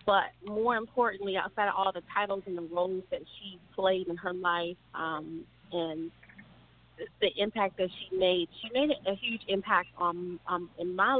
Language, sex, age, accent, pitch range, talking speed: English, female, 30-49, American, 170-195 Hz, 170 wpm